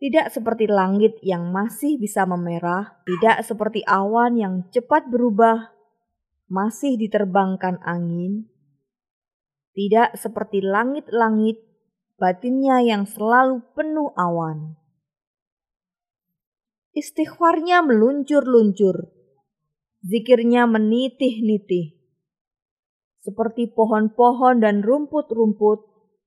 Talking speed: 75 wpm